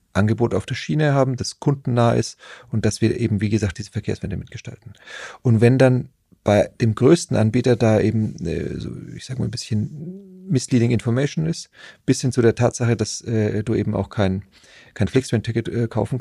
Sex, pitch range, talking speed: male, 105-125 Hz, 175 wpm